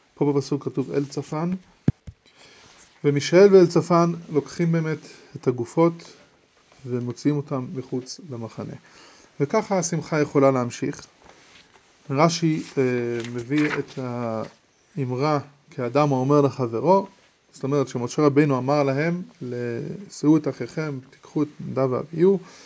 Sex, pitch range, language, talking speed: male, 140-170 Hz, English, 105 wpm